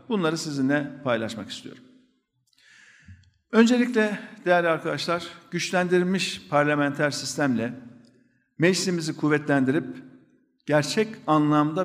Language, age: Turkish, 50-69